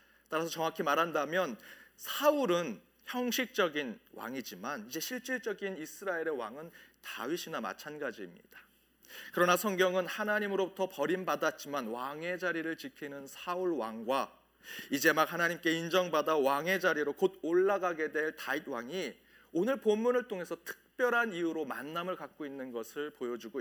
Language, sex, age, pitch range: Korean, male, 40-59, 145-195 Hz